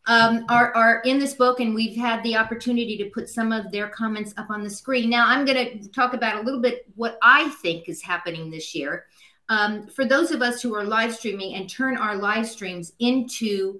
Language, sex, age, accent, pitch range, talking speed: English, female, 50-69, American, 190-245 Hz, 225 wpm